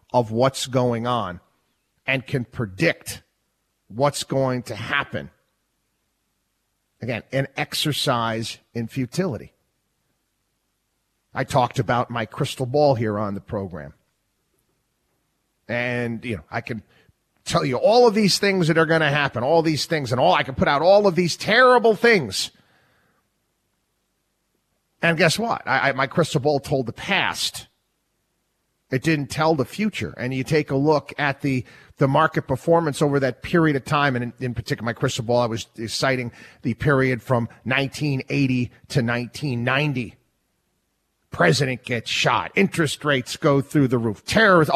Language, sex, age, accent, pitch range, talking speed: English, male, 40-59, American, 120-155 Hz, 150 wpm